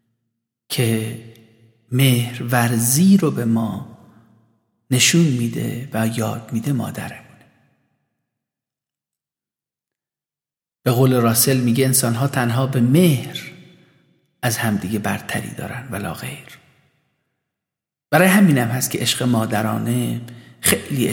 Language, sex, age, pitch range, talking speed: Persian, male, 50-69, 115-155 Hz, 95 wpm